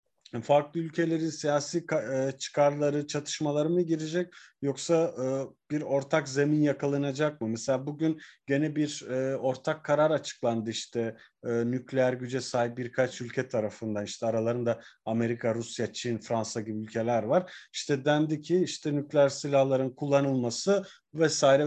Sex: male